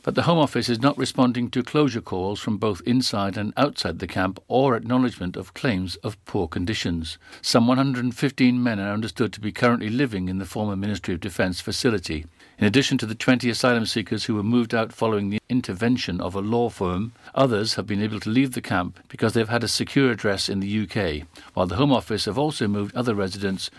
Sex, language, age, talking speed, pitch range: male, English, 60-79, 215 wpm, 100-125 Hz